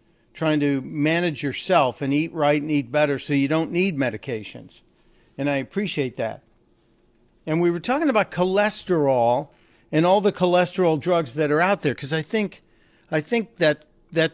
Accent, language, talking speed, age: American, English, 170 wpm, 50-69